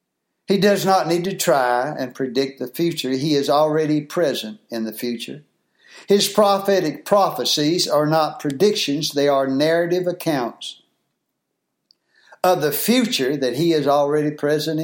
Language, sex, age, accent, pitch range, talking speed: English, male, 60-79, American, 125-170 Hz, 140 wpm